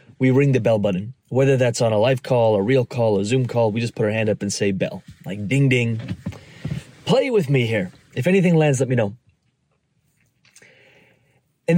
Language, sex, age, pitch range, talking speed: English, male, 30-49, 125-155 Hz, 205 wpm